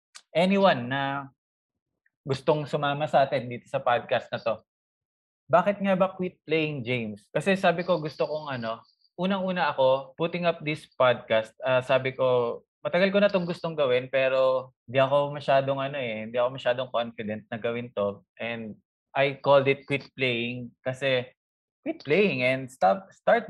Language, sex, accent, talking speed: Filipino, male, native, 165 wpm